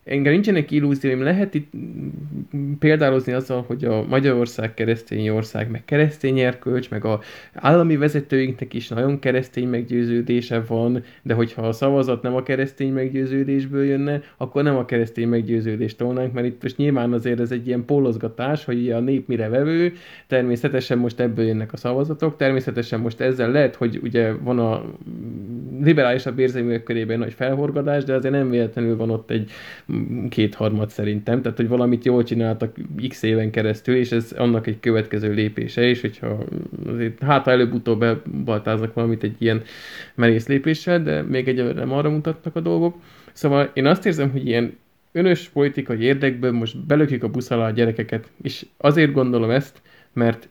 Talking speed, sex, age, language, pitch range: 160 wpm, male, 20-39, Hungarian, 115-140 Hz